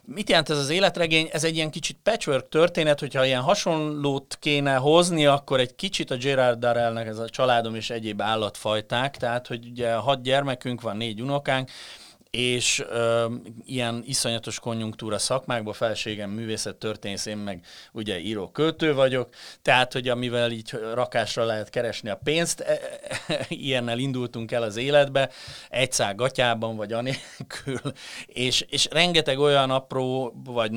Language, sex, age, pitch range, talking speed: Hungarian, male, 30-49, 110-140 Hz, 155 wpm